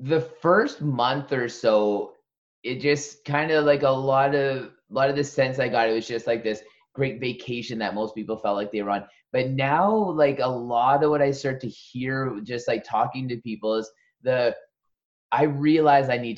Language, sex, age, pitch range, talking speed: English, male, 20-39, 115-145 Hz, 210 wpm